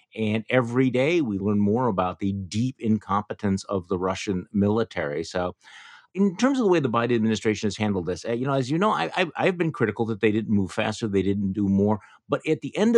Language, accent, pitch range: English, American, 95-110 Hz